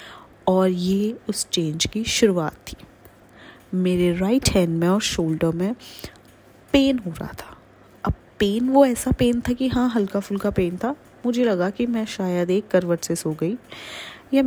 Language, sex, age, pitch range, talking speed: Hindi, female, 20-39, 185-230 Hz, 170 wpm